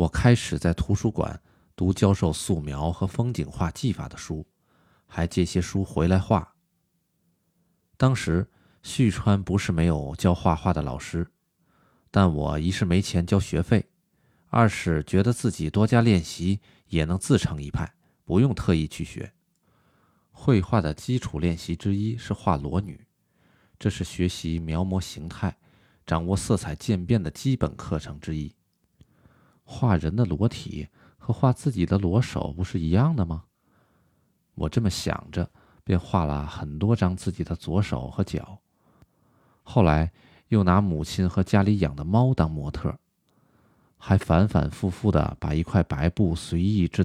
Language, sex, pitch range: Chinese, male, 85-105 Hz